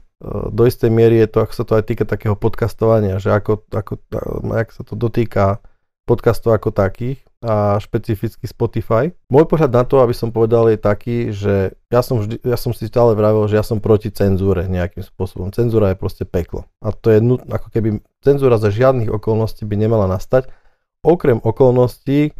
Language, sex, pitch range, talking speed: Slovak, male, 105-120 Hz, 190 wpm